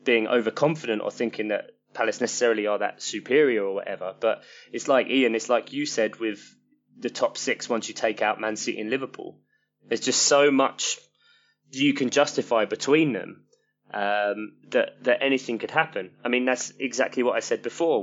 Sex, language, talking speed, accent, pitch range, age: male, English, 185 wpm, British, 105-130 Hz, 20-39